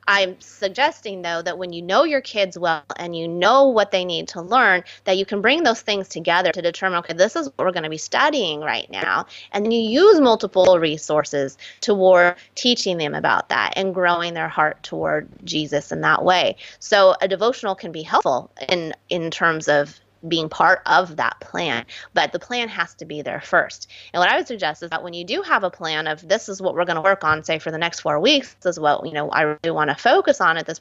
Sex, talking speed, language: female, 235 wpm, English